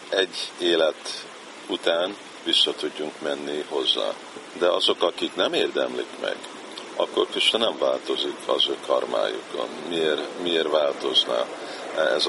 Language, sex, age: Hungarian, male, 50-69